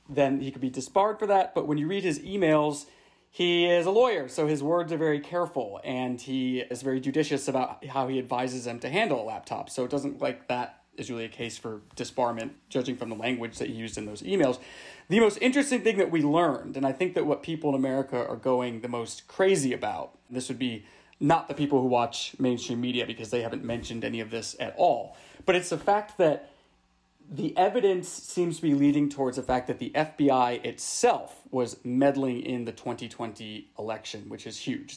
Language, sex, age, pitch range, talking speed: English, male, 30-49, 120-155 Hz, 215 wpm